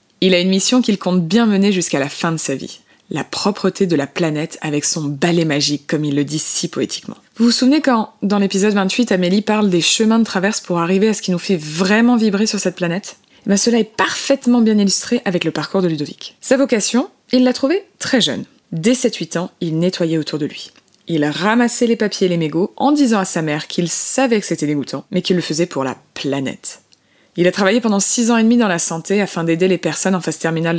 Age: 20-39